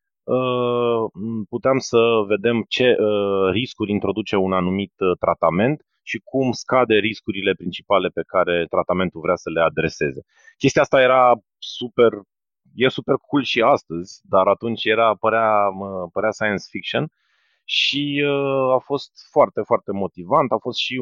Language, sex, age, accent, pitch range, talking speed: Romanian, male, 30-49, native, 95-125 Hz, 145 wpm